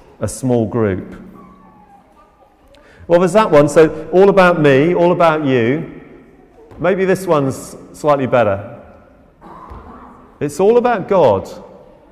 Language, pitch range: English, 135-200 Hz